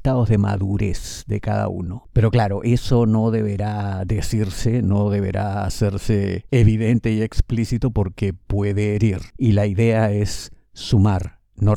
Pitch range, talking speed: 100-125 Hz, 135 wpm